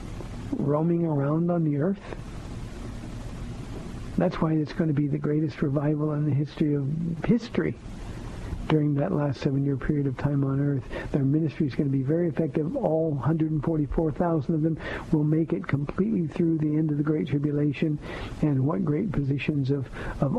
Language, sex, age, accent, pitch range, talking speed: English, male, 60-79, American, 135-165 Hz, 170 wpm